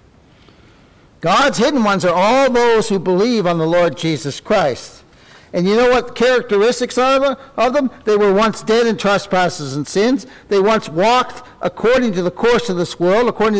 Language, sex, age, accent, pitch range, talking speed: English, male, 60-79, American, 175-255 Hz, 175 wpm